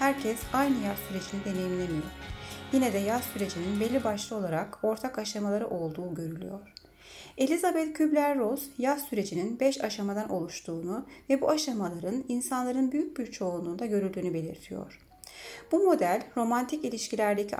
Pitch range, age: 185-250 Hz, 30-49